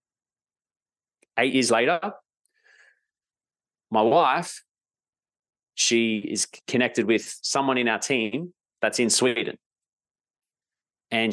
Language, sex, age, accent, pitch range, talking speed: English, male, 20-39, Australian, 105-130 Hz, 90 wpm